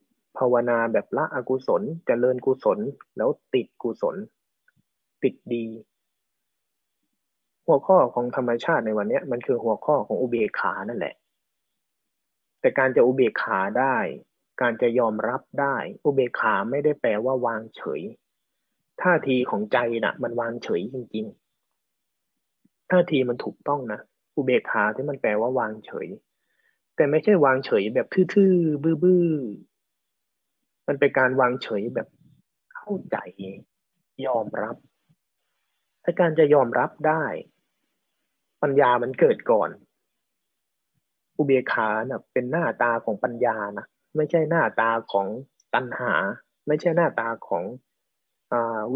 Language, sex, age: Thai, male, 20-39